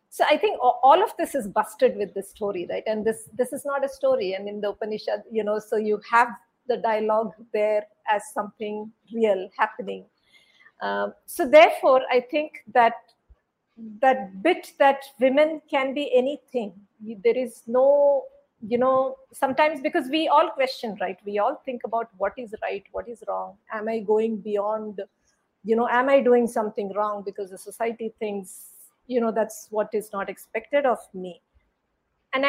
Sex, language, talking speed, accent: female, Hindi, 175 wpm, native